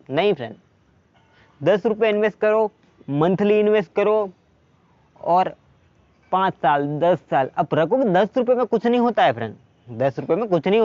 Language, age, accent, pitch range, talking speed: Hindi, 20-39, native, 155-195 Hz, 165 wpm